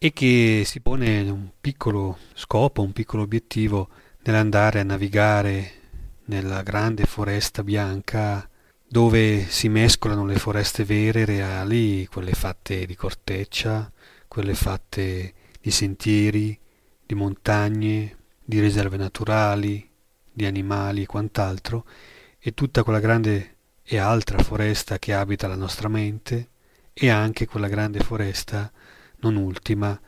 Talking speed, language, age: 120 wpm, Italian, 30-49